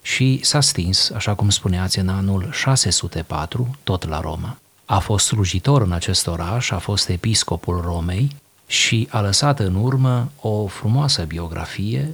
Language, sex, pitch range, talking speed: Romanian, male, 95-120 Hz, 150 wpm